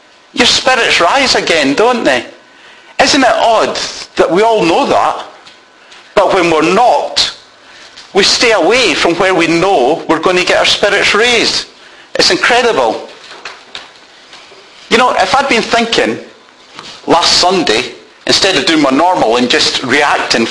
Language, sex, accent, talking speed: English, male, British, 145 wpm